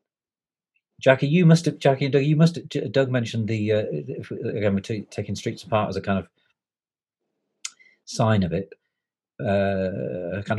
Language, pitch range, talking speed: English, 105-170 Hz, 170 wpm